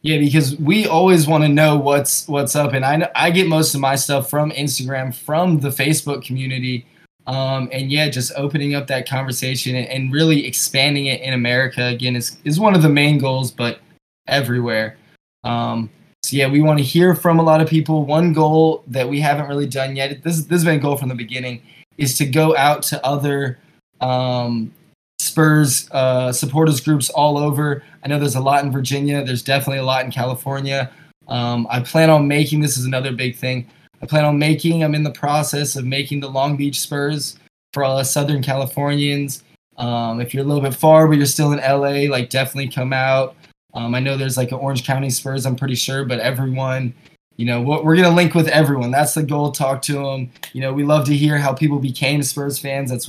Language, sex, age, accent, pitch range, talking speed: English, male, 20-39, American, 130-150 Hz, 215 wpm